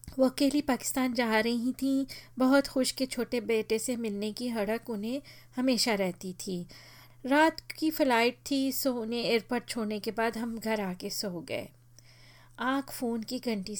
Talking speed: 165 wpm